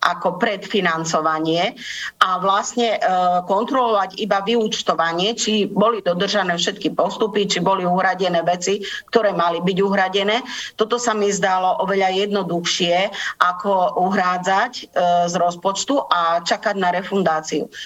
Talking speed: 115 wpm